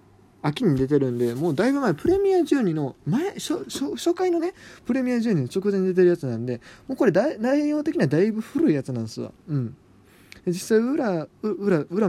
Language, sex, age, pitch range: Japanese, male, 20-39, 125-175 Hz